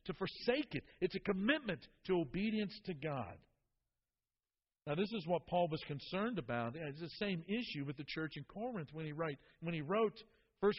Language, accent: English, American